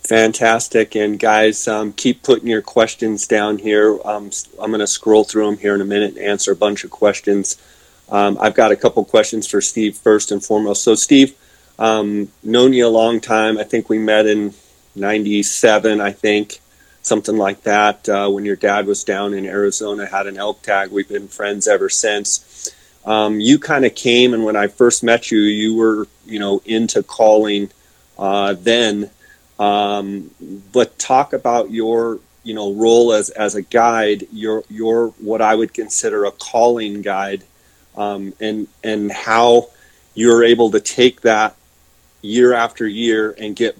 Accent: American